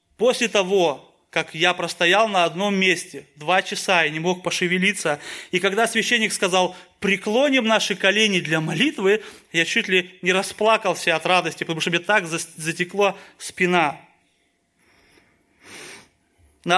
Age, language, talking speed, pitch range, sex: 20-39, Russian, 130 wpm, 170-210 Hz, male